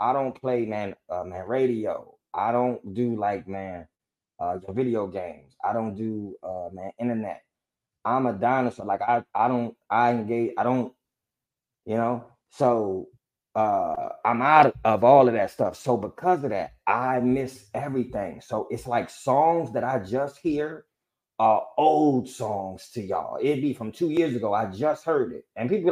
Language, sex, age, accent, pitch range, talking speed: English, male, 20-39, American, 110-135 Hz, 175 wpm